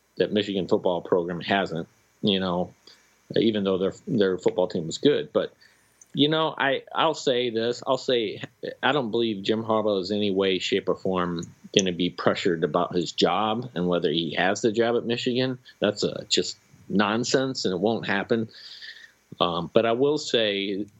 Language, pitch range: English, 95-115 Hz